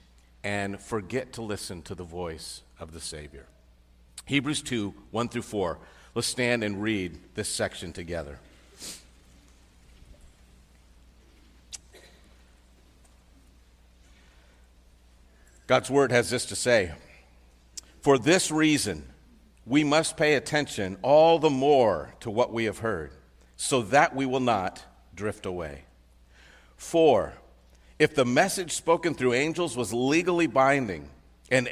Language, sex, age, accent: English, male, 50-69, American